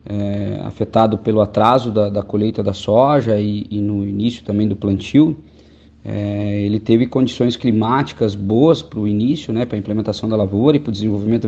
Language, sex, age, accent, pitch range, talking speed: Portuguese, male, 20-39, Brazilian, 105-120 Hz, 185 wpm